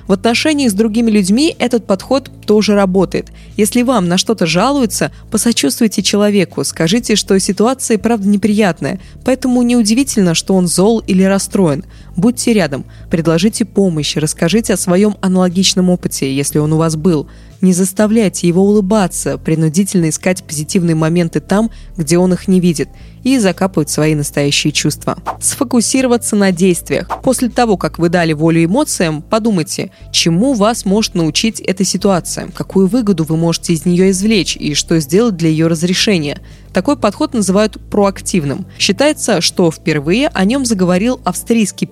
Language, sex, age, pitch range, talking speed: Russian, female, 20-39, 165-220 Hz, 145 wpm